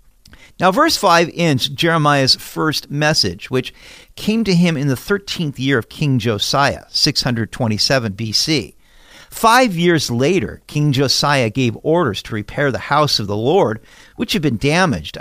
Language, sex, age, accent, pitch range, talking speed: English, male, 50-69, American, 120-175 Hz, 150 wpm